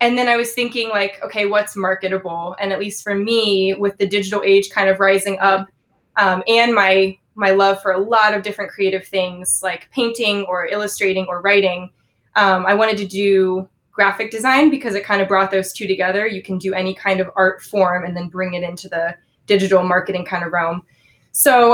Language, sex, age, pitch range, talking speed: English, female, 20-39, 190-225 Hz, 205 wpm